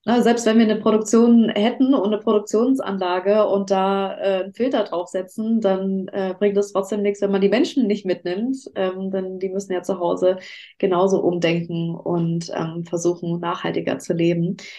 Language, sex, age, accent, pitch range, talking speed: German, female, 20-39, German, 185-215 Hz, 175 wpm